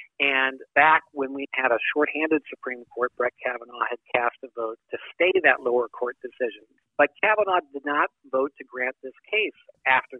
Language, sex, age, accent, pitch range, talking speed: English, male, 50-69, American, 125-155 Hz, 180 wpm